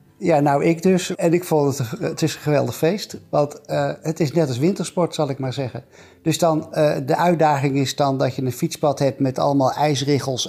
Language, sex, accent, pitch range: Dutch, male, Dutch, 125-155 Hz